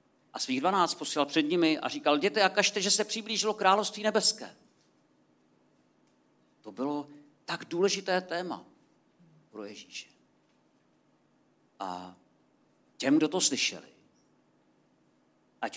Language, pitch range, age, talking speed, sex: Czech, 145-225 Hz, 50-69, 110 wpm, male